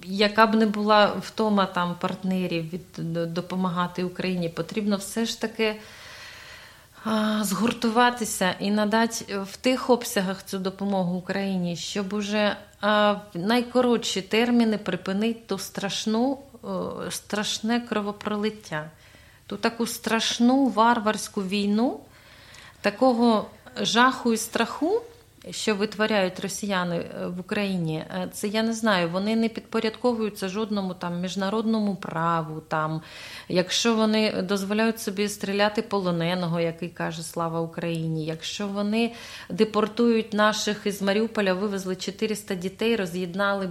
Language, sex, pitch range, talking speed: Polish, female, 185-220 Hz, 110 wpm